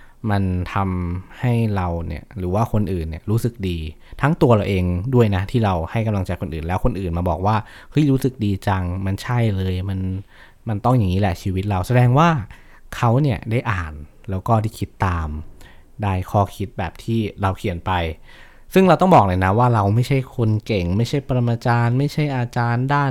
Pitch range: 90-120 Hz